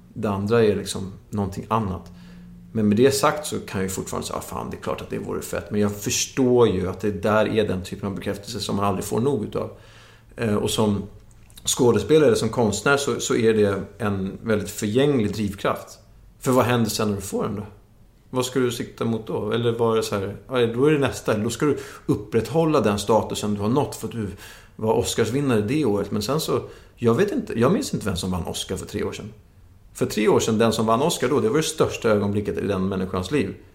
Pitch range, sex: 100-115 Hz, male